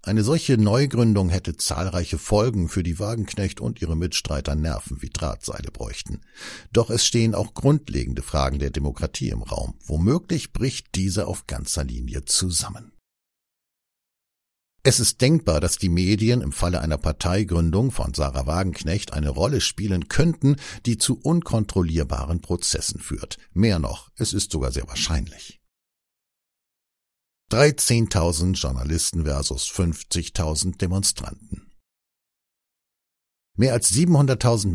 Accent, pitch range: German, 75-105 Hz